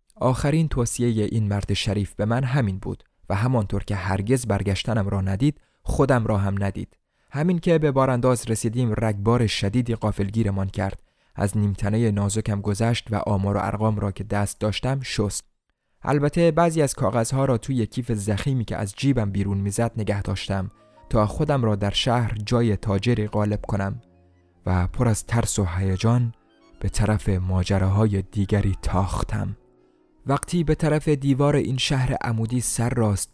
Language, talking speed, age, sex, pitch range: Persian, 155 wpm, 20-39, male, 100-120 Hz